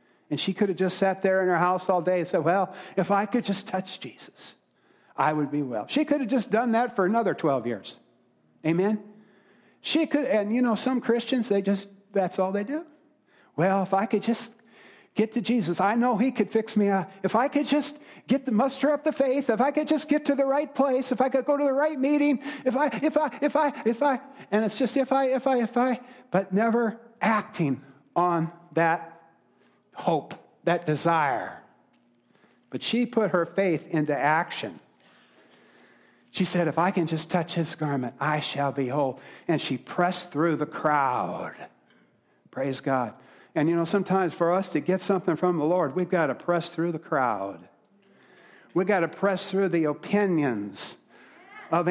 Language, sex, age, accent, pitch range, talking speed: English, male, 50-69, American, 170-240 Hz, 200 wpm